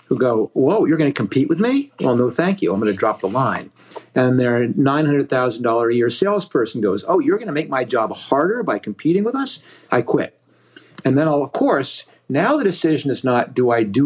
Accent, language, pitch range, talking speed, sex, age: American, English, 120-160 Hz, 220 wpm, male, 60-79